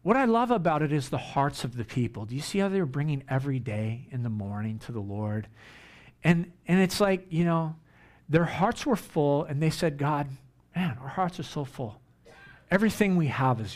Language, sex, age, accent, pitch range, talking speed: English, male, 50-69, American, 130-190 Hz, 220 wpm